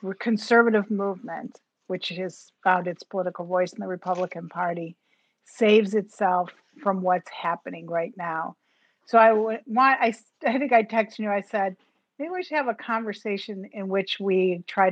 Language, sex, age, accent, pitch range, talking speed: English, female, 50-69, American, 180-215 Hz, 165 wpm